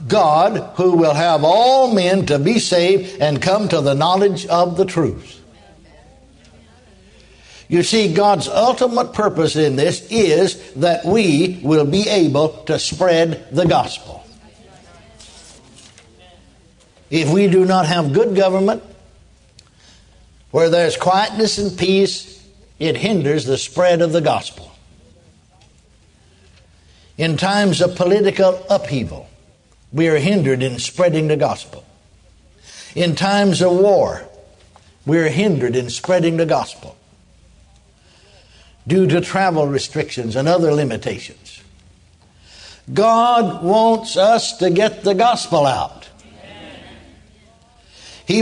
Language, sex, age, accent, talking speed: English, male, 60-79, American, 115 wpm